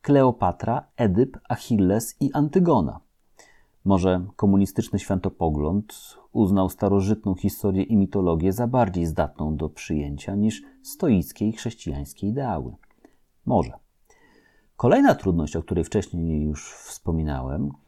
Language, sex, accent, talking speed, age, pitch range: Polish, male, native, 105 wpm, 40-59, 80-120 Hz